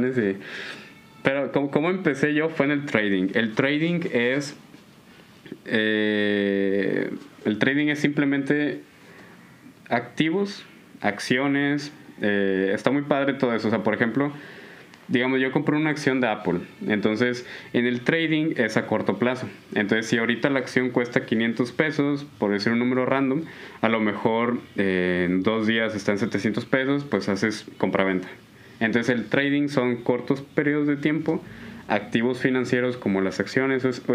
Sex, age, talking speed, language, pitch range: male, 20-39, 150 wpm, Spanish, 110-140 Hz